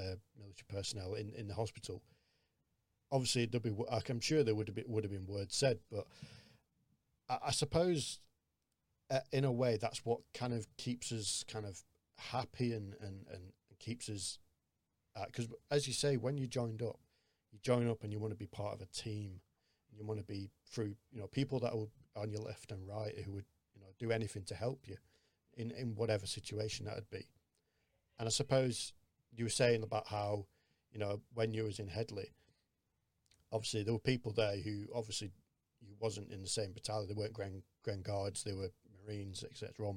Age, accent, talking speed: 40-59, British, 205 wpm